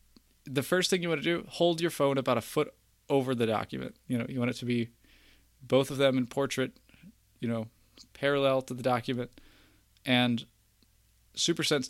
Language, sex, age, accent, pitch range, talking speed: English, male, 20-39, American, 115-135 Hz, 180 wpm